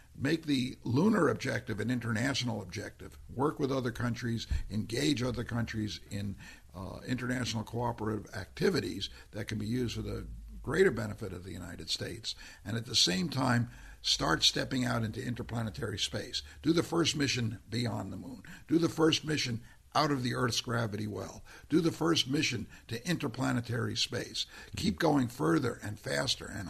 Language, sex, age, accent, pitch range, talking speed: English, male, 60-79, American, 105-130 Hz, 160 wpm